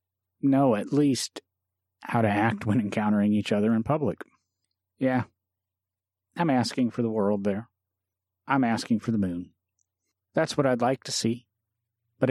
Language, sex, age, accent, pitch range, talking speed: English, male, 40-59, American, 95-125 Hz, 150 wpm